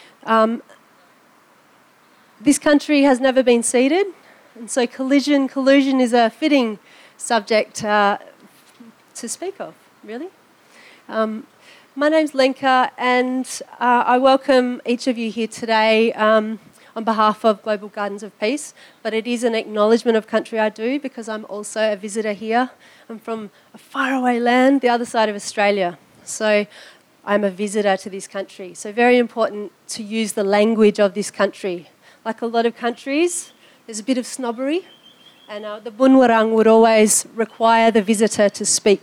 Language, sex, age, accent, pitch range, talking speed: English, female, 30-49, Australian, 210-255 Hz, 160 wpm